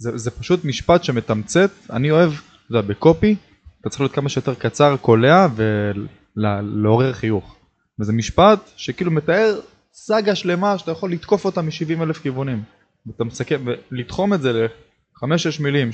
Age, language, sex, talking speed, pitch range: 20-39, Hebrew, male, 145 wpm, 115-170 Hz